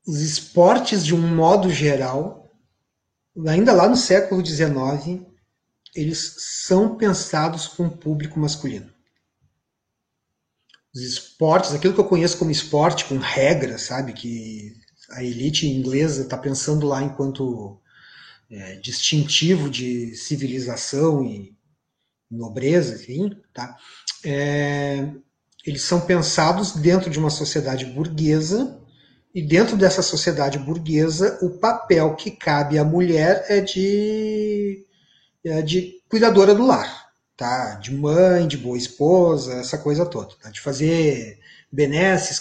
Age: 40-59